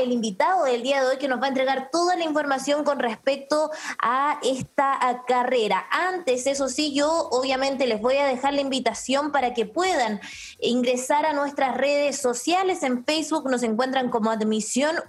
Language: Spanish